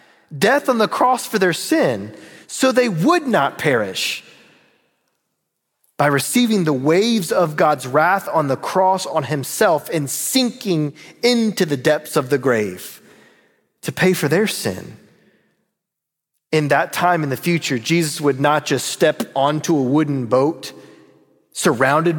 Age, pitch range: 30-49, 140-185 Hz